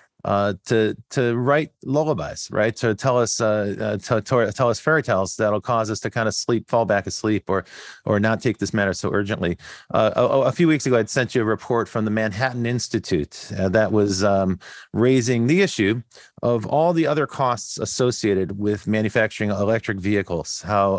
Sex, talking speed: male, 195 wpm